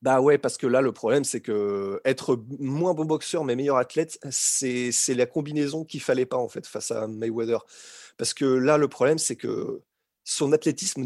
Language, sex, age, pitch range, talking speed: French, male, 30-49, 125-170 Hz, 200 wpm